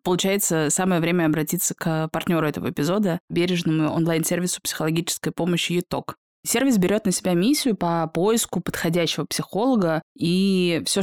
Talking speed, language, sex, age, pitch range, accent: 130 wpm, Russian, female, 20-39, 160-195 Hz, native